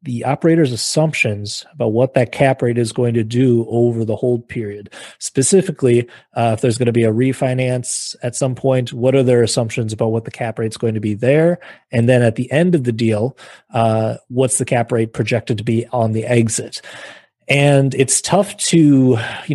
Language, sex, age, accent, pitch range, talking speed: English, male, 30-49, American, 115-135 Hz, 200 wpm